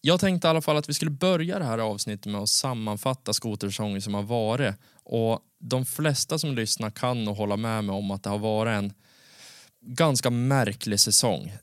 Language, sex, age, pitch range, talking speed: Swedish, male, 20-39, 105-135 Hz, 190 wpm